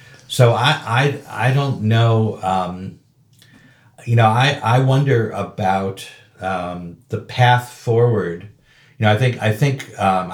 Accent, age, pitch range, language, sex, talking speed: American, 50-69, 95-125 Hz, English, male, 140 wpm